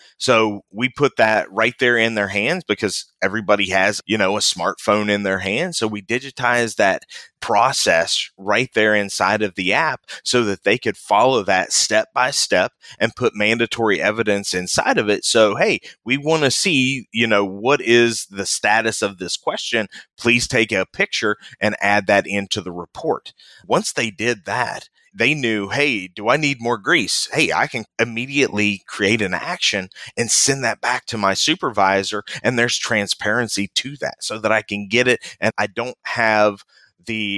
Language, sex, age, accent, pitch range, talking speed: English, male, 30-49, American, 100-115 Hz, 180 wpm